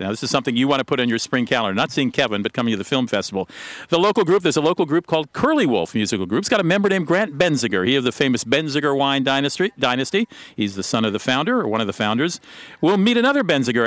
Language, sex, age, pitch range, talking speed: English, male, 50-69, 105-145 Hz, 270 wpm